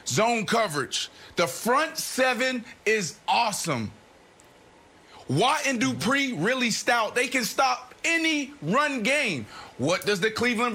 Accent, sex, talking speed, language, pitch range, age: American, male, 125 wpm, English, 190-240 Hz, 30-49